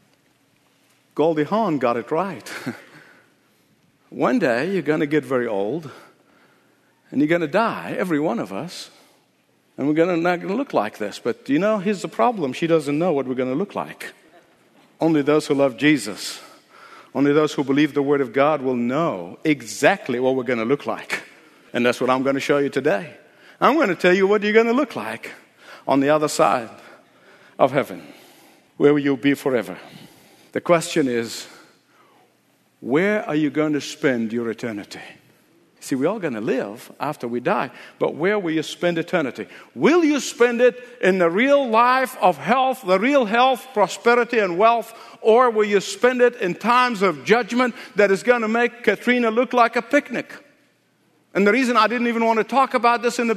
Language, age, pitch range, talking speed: English, 50-69, 150-240 Hz, 195 wpm